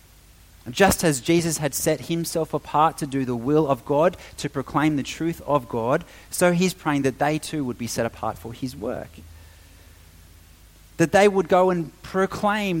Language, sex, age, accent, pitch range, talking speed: English, male, 30-49, Australian, 100-155 Hz, 180 wpm